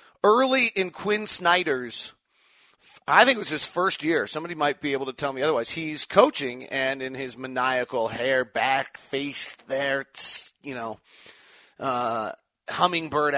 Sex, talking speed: male, 150 wpm